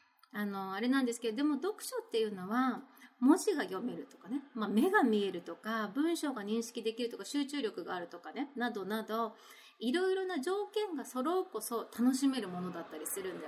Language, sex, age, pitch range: Japanese, female, 30-49, 215-305 Hz